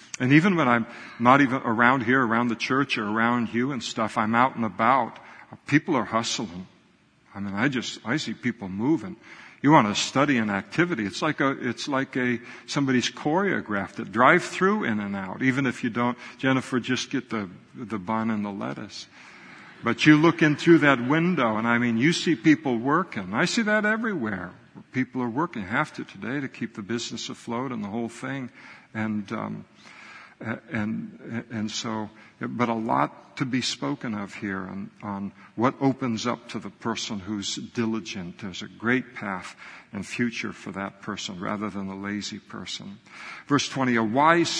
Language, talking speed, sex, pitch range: English, 185 wpm, male, 110-130 Hz